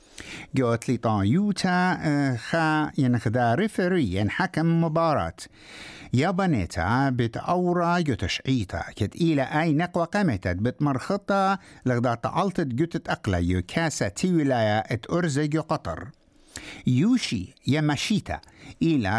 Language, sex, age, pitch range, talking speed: English, male, 60-79, 110-155 Hz, 95 wpm